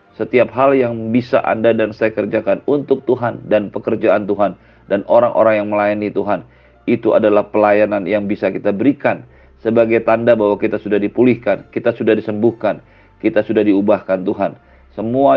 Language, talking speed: Indonesian, 150 wpm